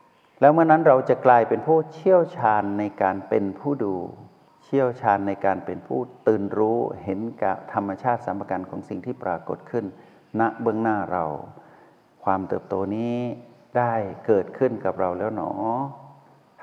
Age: 60-79